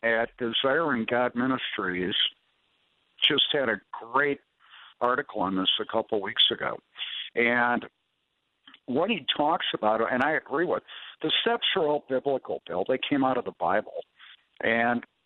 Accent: American